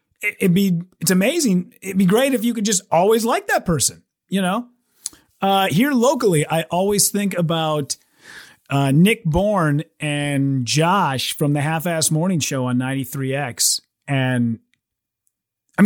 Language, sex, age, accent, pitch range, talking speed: English, male, 30-49, American, 150-225 Hz, 150 wpm